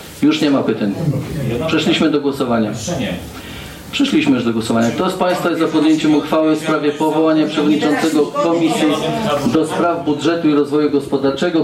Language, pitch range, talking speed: Polish, 115-155 Hz, 145 wpm